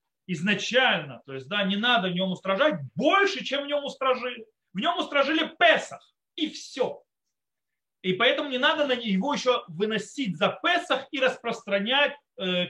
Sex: male